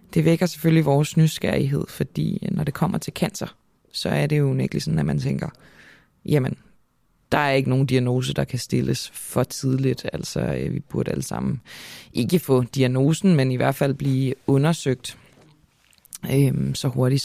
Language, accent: Danish, native